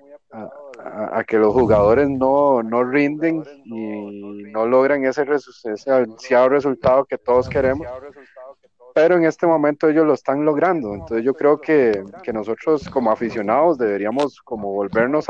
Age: 30-49